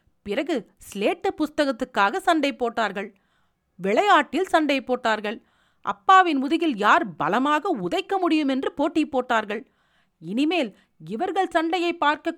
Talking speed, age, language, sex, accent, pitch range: 100 wpm, 40-59, Tamil, female, native, 230-335 Hz